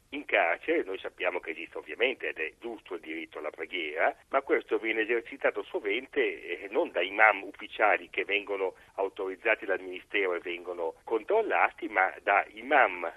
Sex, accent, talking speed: male, native, 160 wpm